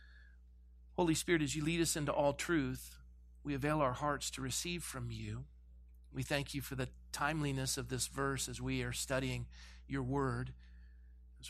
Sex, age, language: male, 40-59, English